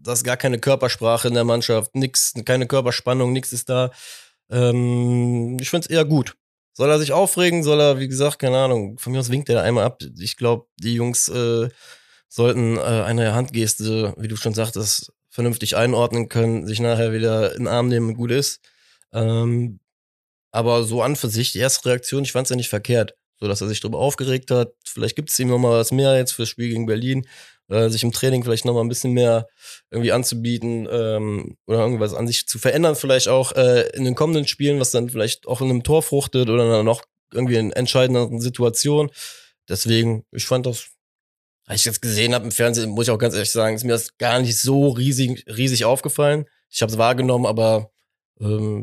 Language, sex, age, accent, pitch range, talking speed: German, male, 20-39, German, 115-130 Hz, 205 wpm